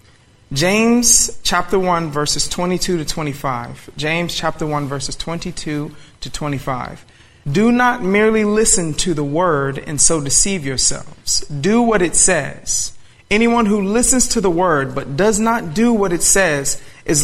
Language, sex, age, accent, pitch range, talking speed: English, male, 40-59, American, 145-200 Hz, 150 wpm